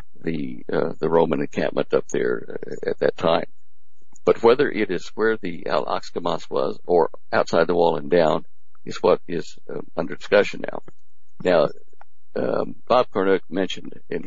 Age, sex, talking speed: 60-79, male, 155 wpm